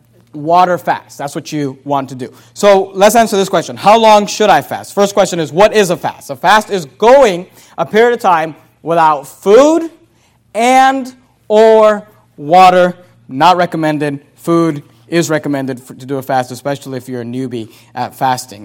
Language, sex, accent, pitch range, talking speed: English, male, American, 150-195 Hz, 175 wpm